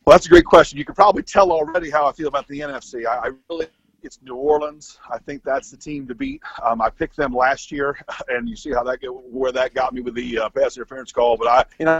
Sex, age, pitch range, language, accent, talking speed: male, 40-59, 120-150 Hz, English, American, 265 wpm